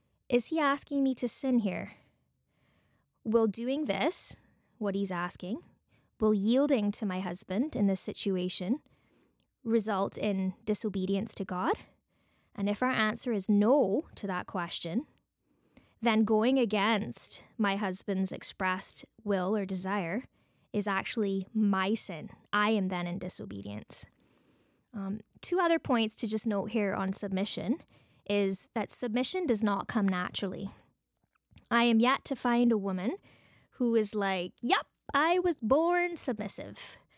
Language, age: English, 20-39